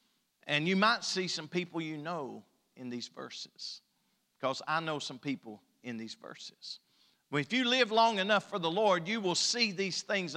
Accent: American